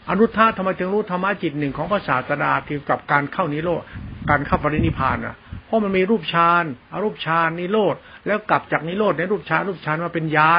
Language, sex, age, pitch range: Thai, male, 60-79, 145-190 Hz